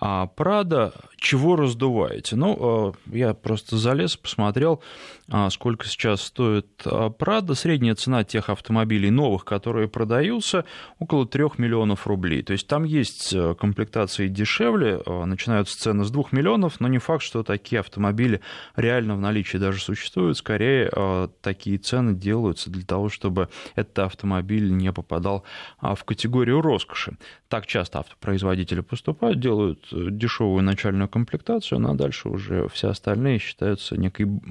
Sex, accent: male, native